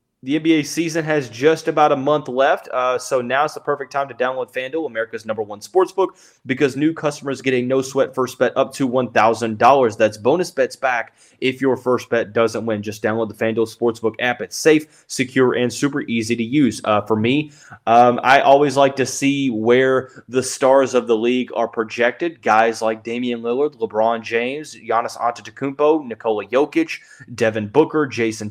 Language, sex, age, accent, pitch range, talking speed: English, male, 20-39, American, 115-145 Hz, 185 wpm